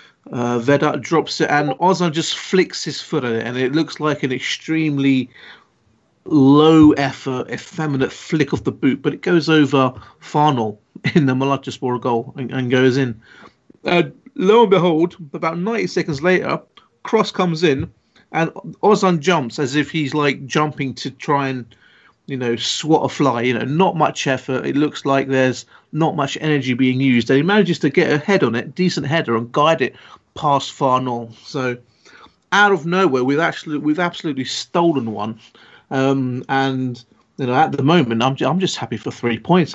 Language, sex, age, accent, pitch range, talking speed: English, male, 40-59, British, 125-160 Hz, 180 wpm